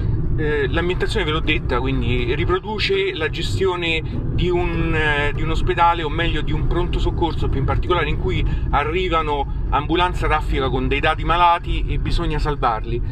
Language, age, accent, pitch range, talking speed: Italian, 30-49, native, 130-180 Hz, 150 wpm